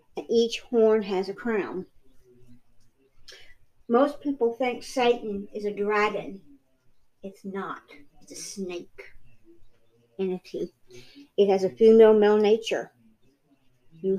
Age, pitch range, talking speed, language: 50-69, 155-210 Hz, 105 wpm, English